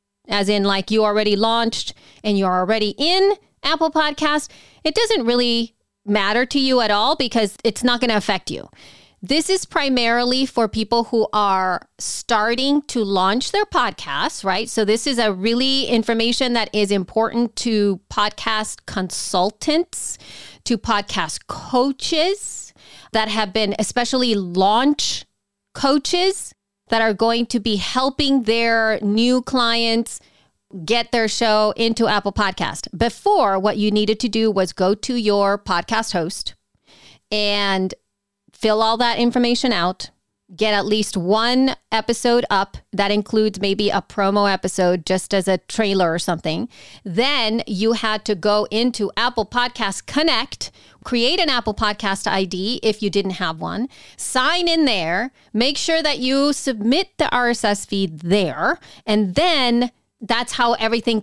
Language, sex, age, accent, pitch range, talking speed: English, female, 30-49, American, 200-245 Hz, 145 wpm